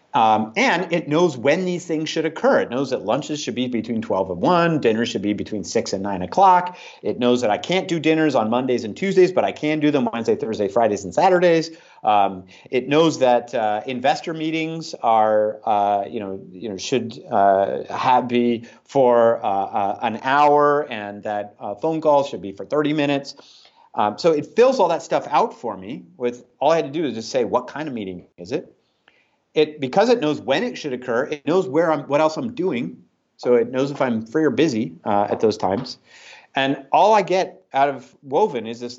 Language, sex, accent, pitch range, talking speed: English, male, American, 120-165 Hz, 220 wpm